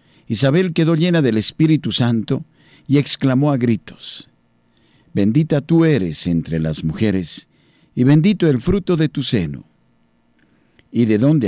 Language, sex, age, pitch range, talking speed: Spanish, male, 50-69, 90-135 Hz, 135 wpm